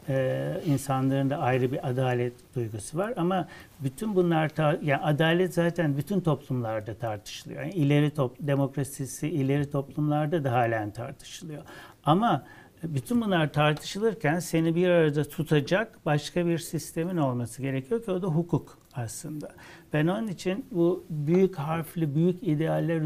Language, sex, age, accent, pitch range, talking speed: Turkish, male, 60-79, native, 135-170 Hz, 140 wpm